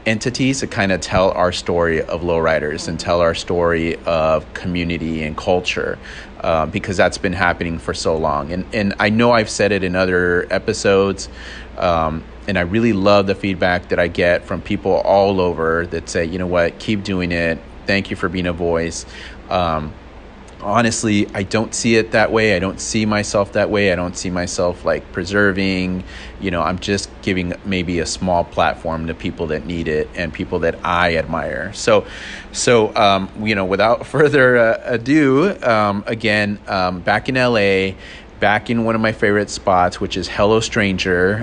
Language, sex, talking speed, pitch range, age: English, male, 185 wpm, 85-105 Hz, 30-49